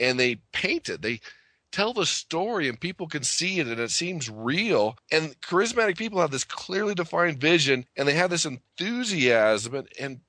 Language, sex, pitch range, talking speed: English, male, 115-155 Hz, 185 wpm